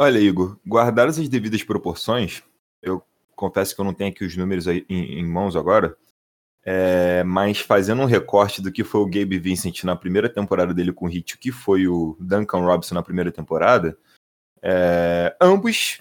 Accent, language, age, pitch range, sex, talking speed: Brazilian, Portuguese, 20-39, 95-150 Hz, male, 185 wpm